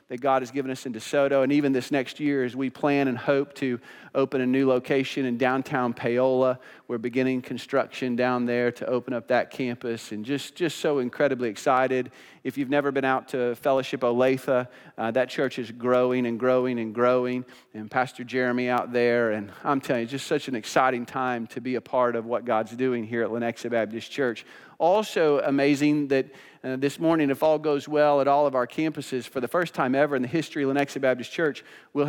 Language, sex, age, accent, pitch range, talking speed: English, male, 40-59, American, 125-150 Hz, 210 wpm